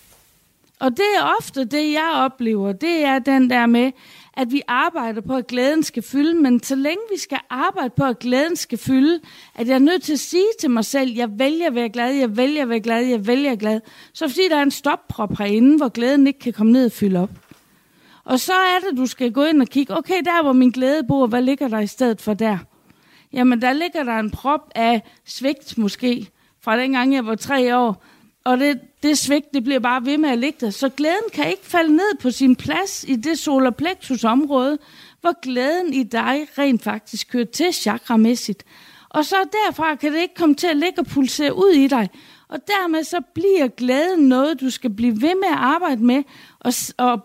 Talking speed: 225 wpm